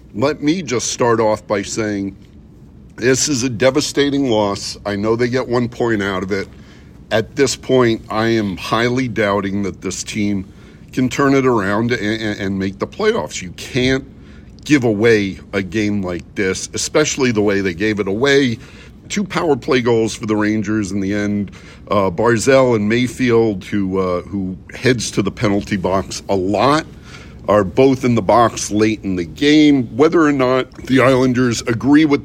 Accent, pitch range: American, 100-130 Hz